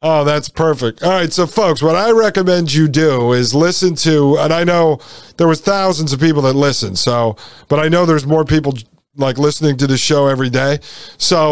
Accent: American